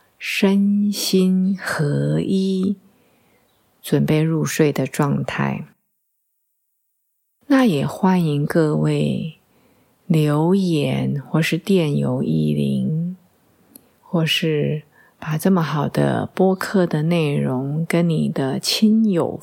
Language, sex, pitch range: Chinese, female, 145-185 Hz